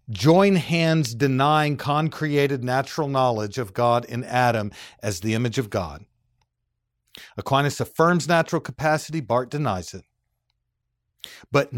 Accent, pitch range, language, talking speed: American, 115-155 Hz, English, 115 wpm